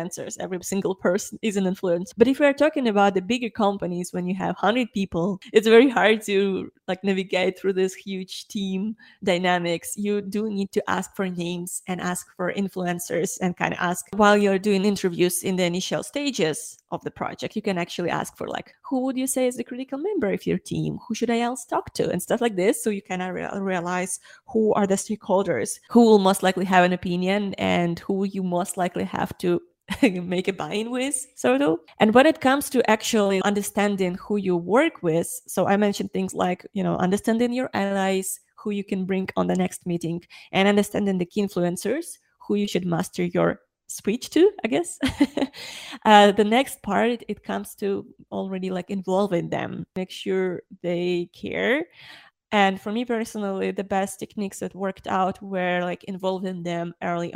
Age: 20-39